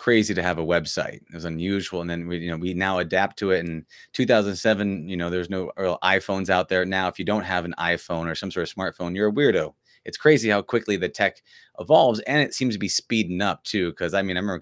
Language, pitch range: English, 90-120 Hz